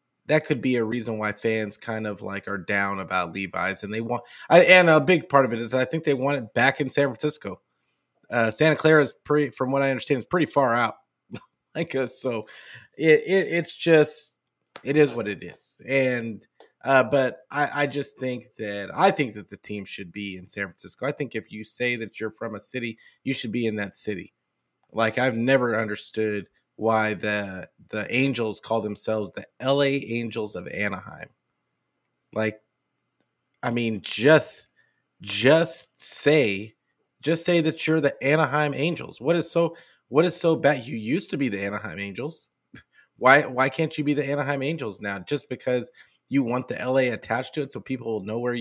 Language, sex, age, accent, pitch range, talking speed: English, male, 30-49, American, 110-150 Hz, 190 wpm